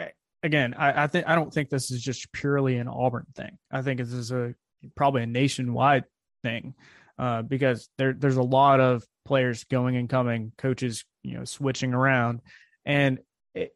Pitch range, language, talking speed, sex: 125-145 Hz, English, 180 wpm, male